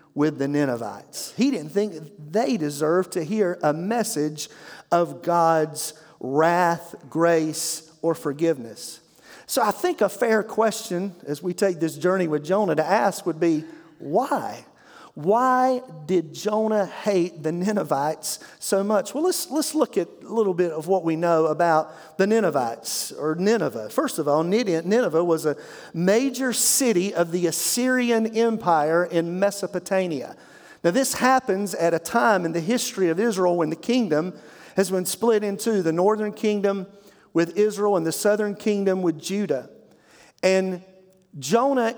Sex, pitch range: male, 165-215 Hz